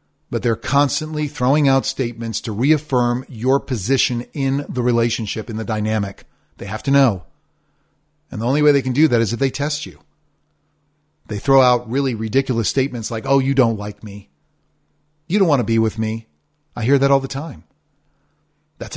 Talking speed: 185 wpm